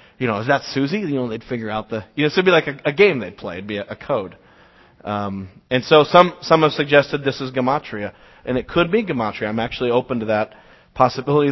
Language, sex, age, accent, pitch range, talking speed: English, male, 40-59, American, 105-155 Hz, 250 wpm